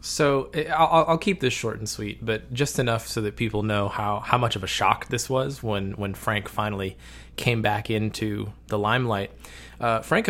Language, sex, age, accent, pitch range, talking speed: English, male, 20-39, American, 100-130 Hz, 190 wpm